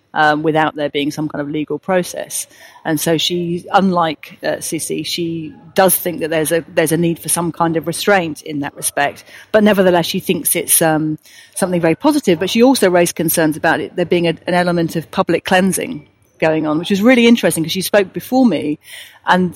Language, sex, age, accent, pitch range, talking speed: English, female, 40-59, British, 160-185 Hz, 210 wpm